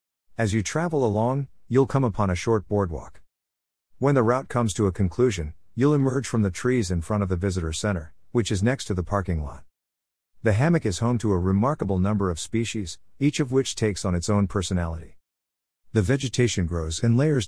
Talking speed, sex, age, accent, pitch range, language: 200 wpm, male, 50-69, American, 85-120 Hz, English